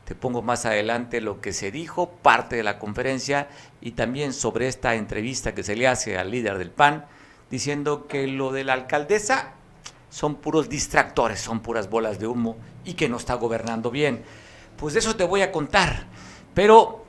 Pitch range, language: 115-135 Hz, Spanish